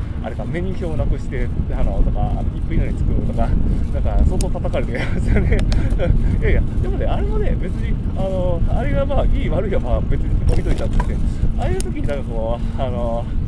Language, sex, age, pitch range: Japanese, male, 20-39, 80-110 Hz